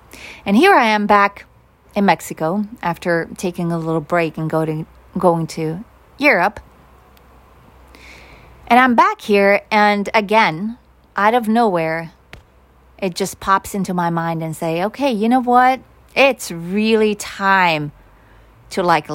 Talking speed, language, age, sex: 130 wpm, English, 30-49, female